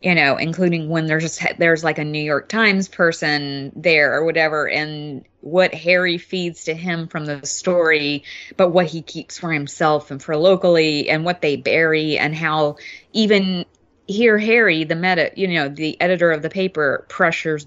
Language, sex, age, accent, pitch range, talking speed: English, female, 20-39, American, 145-175 Hz, 180 wpm